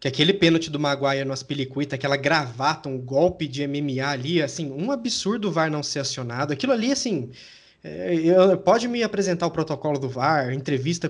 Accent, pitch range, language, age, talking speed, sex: Brazilian, 145-210 Hz, Portuguese, 20-39, 185 wpm, male